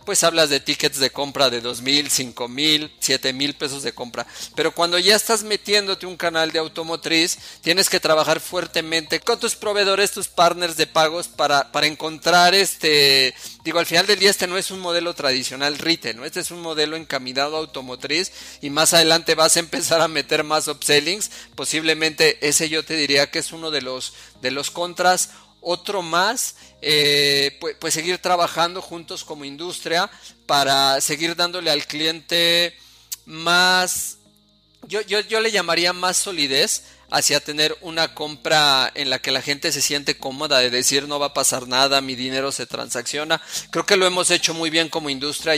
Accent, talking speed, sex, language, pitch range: Mexican, 180 wpm, male, Spanish, 140-170 Hz